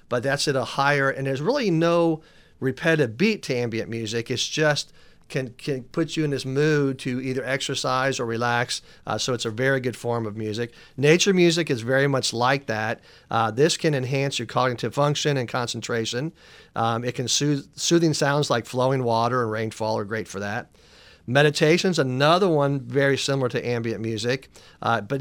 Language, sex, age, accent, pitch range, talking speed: English, male, 40-59, American, 120-145 Hz, 185 wpm